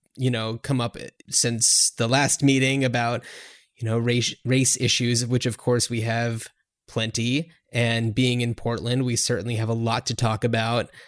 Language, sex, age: English, male, 20-39